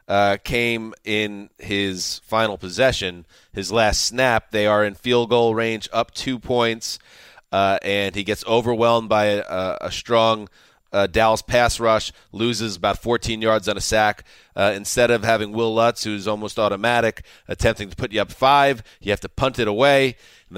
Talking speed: 175 wpm